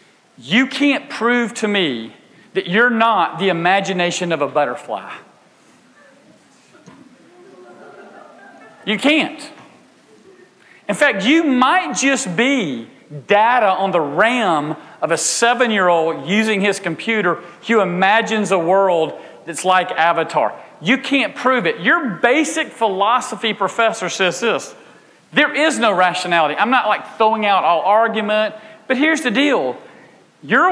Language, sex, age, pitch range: English, male, 40-59, 170-235 Hz